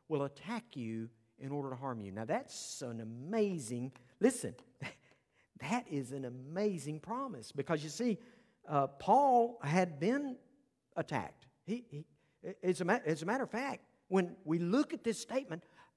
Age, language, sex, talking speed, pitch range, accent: 50-69, English, male, 155 wpm, 150-235 Hz, American